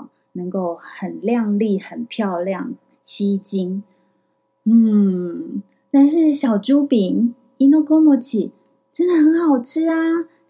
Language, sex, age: Chinese, female, 20-39